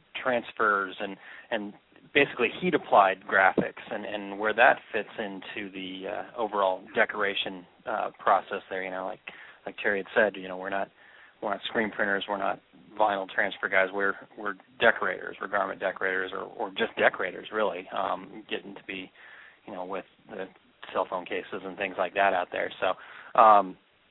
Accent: American